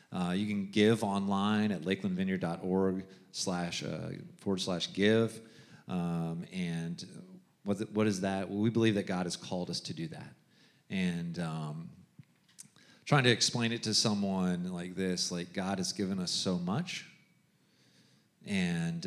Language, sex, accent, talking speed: English, male, American, 140 wpm